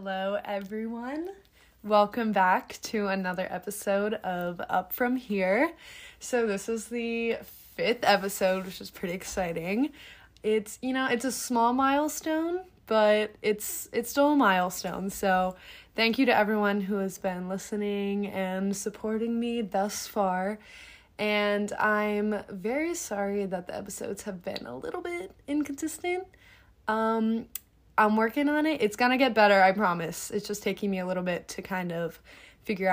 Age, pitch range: 20-39, 195-245 Hz